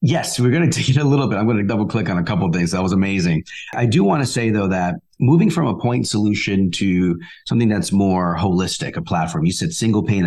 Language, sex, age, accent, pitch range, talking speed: English, male, 40-59, American, 95-130 Hz, 265 wpm